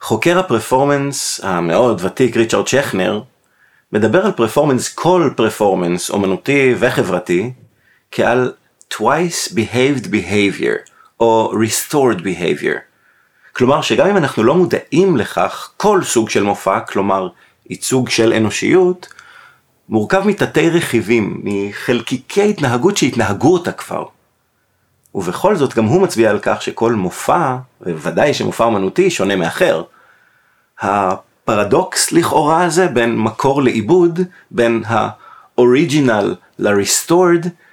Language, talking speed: Hebrew, 105 wpm